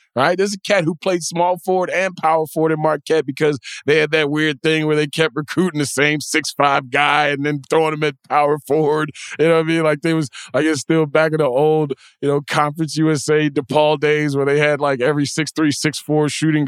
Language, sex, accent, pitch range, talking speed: English, male, American, 135-160 Hz, 240 wpm